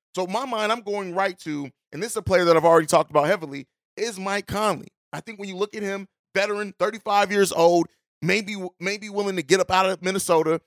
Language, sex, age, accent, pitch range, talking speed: English, male, 30-49, American, 160-200 Hz, 230 wpm